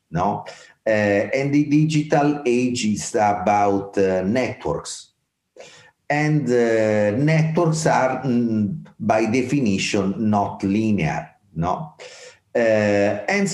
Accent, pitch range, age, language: Italian, 95-130 Hz, 40-59, English